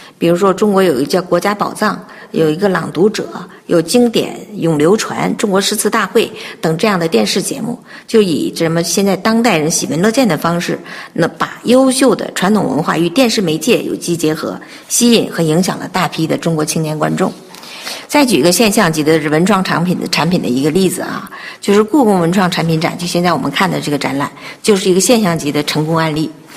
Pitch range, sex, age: 170-225 Hz, female, 50-69